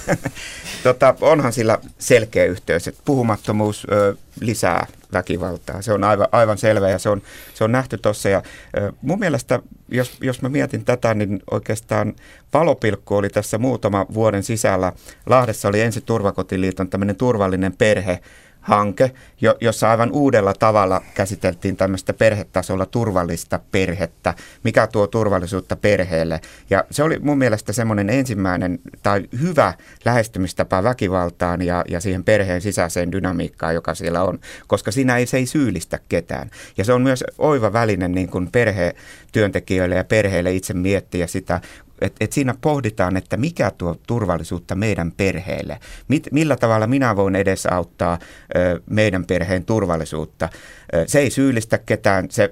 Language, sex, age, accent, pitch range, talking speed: Finnish, male, 50-69, native, 90-110 Hz, 140 wpm